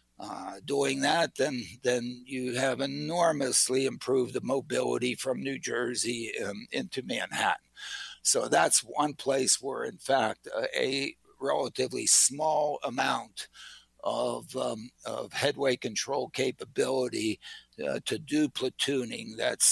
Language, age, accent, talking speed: English, 60-79, American, 120 wpm